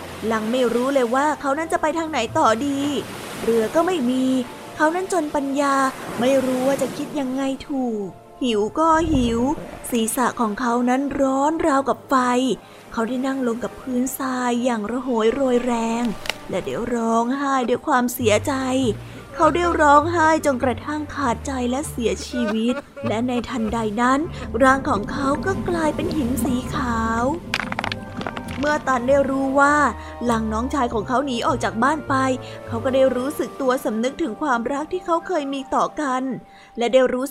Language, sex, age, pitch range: Thai, female, 20-39, 240-280 Hz